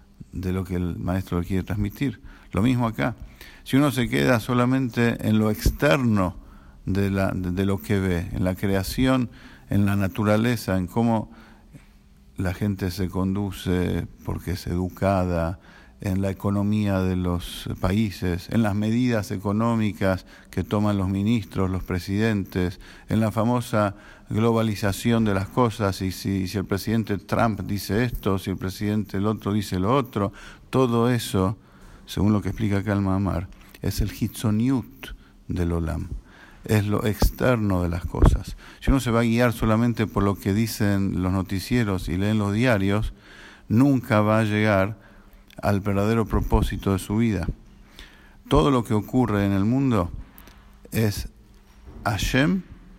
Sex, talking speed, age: male, 150 wpm, 50-69